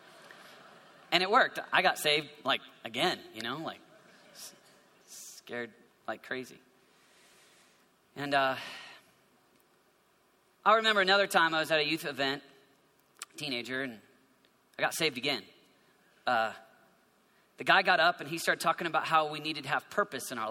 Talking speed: 145 wpm